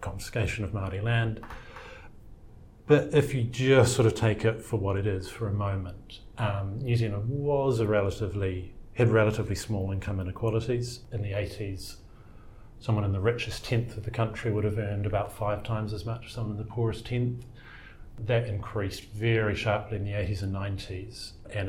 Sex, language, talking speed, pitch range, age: male, English, 180 wpm, 100-115 Hz, 40-59